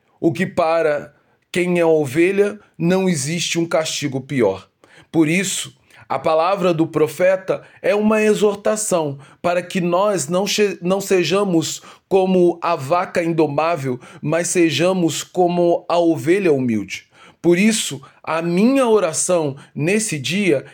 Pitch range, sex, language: 160-200 Hz, male, Portuguese